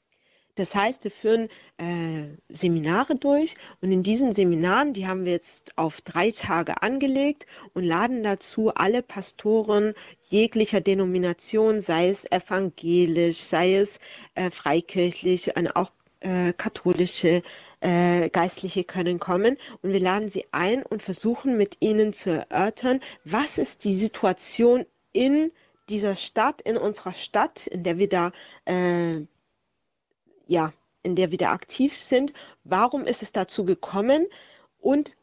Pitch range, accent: 180-230 Hz, German